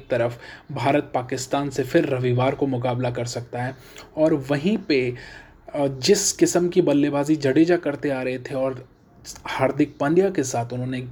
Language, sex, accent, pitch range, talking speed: Hindi, male, native, 125-160 Hz, 155 wpm